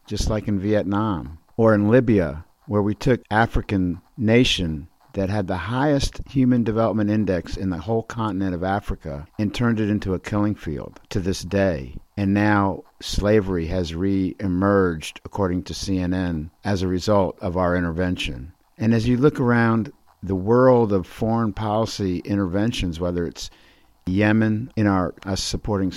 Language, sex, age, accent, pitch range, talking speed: English, male, 50-69, American, 95-115 Hz, 155 wpm